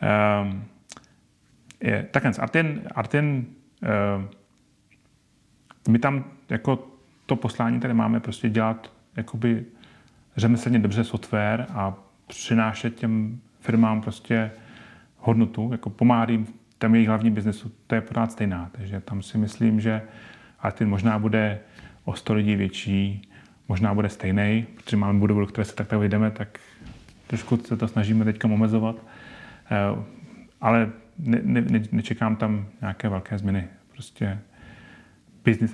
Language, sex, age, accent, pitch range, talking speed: Czech, male, 30-49, native, 105-120 Hz, 125 wpm